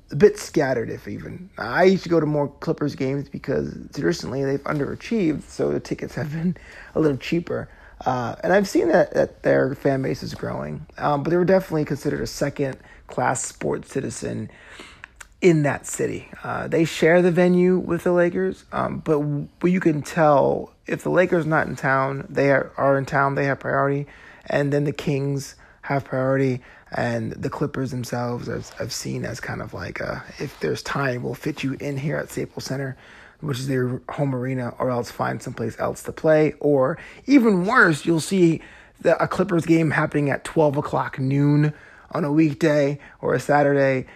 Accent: American